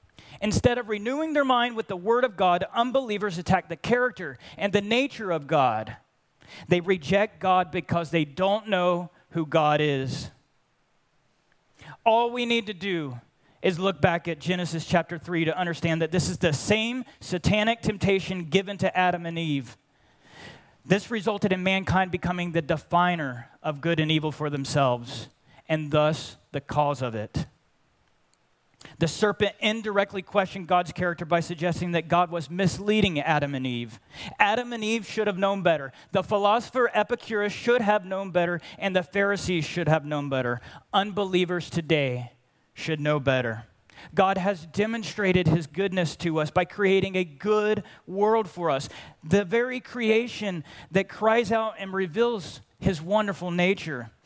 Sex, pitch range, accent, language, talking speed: male, 155-205 Hz, American, English, 155 wpm